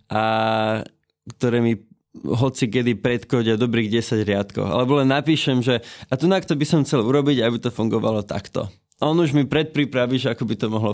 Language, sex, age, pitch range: Slovak, male, 20-39, 110-135 Hz